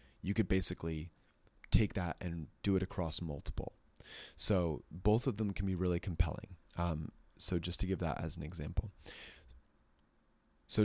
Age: 30-49